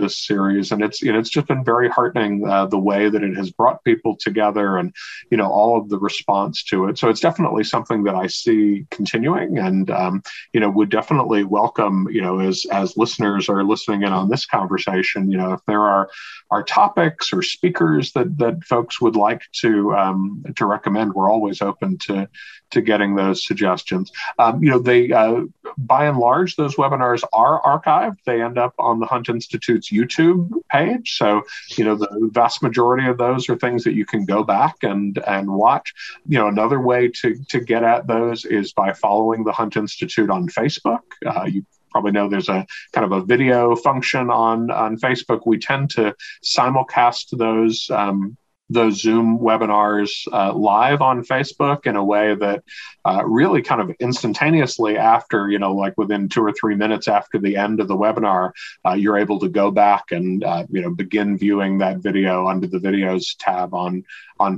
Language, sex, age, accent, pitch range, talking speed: English, male, 50-69, American, 100-120 Hz, 195 wpm